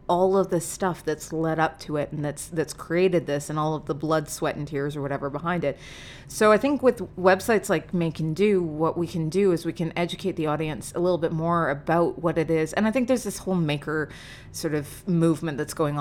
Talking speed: 245 wpm